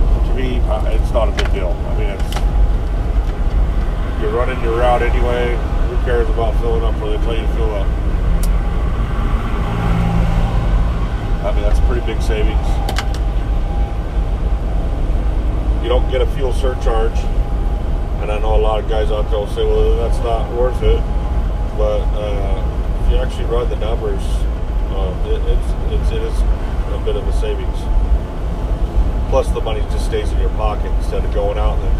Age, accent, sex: 30-49, American, male